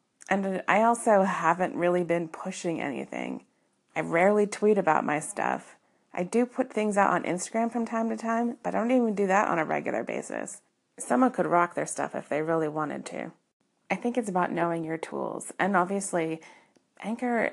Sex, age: female, 30-49